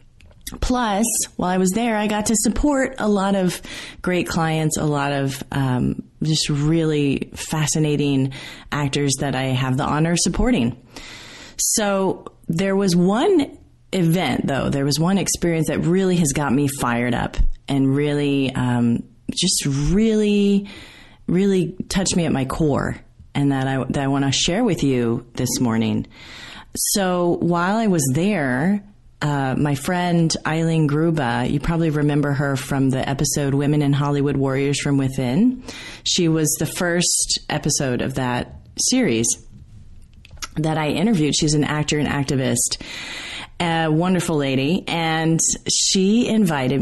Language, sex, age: English, female, 30-49